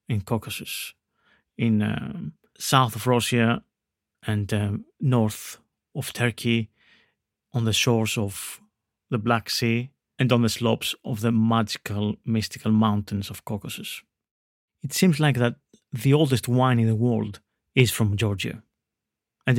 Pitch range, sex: 110-130 Hz, male